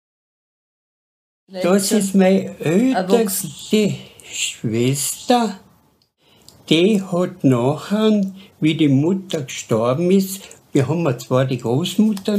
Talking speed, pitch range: 85 wpm, 145-195 Hz